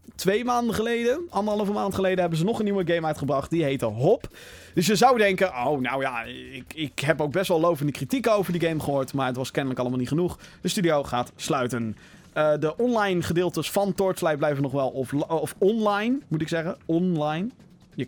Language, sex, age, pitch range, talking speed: Dutch, male, 20-39, 140-200 Hz, 210 wpm